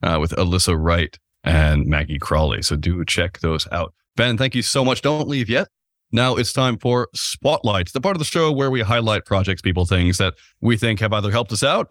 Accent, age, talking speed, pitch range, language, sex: American, 30-49, 220 wpm, 95-125 Hz, English, male